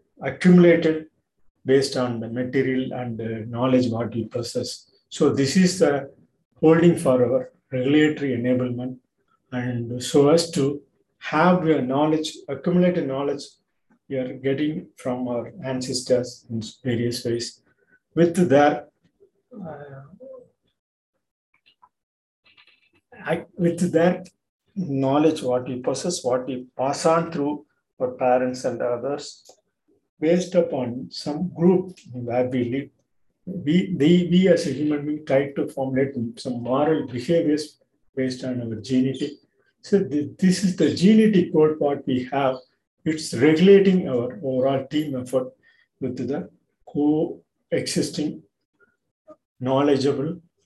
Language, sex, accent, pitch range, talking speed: Tamil, male, native, 125-165 Hz, 120 wpm